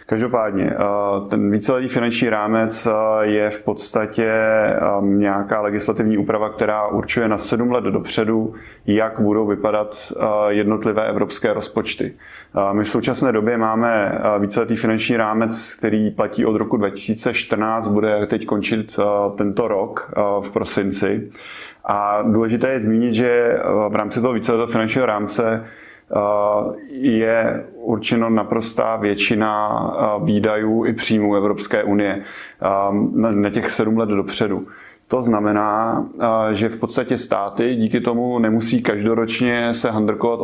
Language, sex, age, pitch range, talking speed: Czech, male, 20-39, 105-115 Hz, 120 wpm